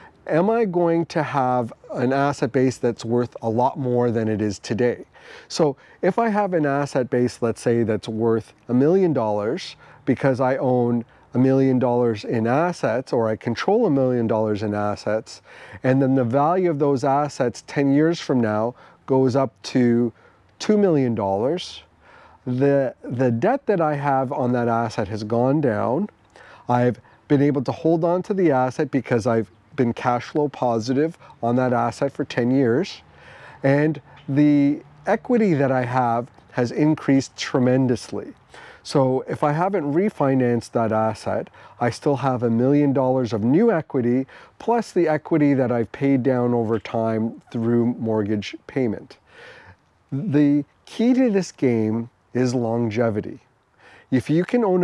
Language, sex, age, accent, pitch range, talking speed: English, male, 40-59, American, 115-145 Hz, 160 wpm